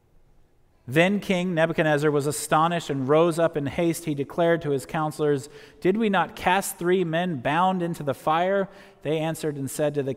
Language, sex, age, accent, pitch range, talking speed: English, male, 40-59, American, 120-160 Hz, 185 wpm